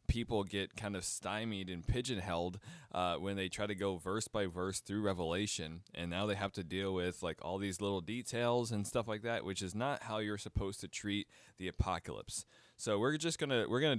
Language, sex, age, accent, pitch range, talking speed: English, male, 20-39, American, 90-110 Hz, 215 wpm